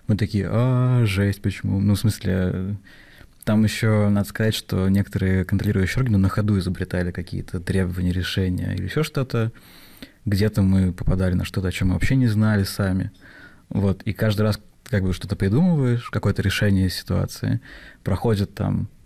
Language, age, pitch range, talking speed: Russian, 20-39, 95-115 Hz, 155 wpm